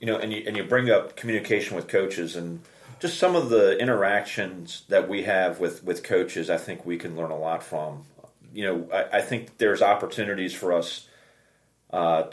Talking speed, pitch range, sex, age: 200 wpm, 90-120 Hz, male, 40-59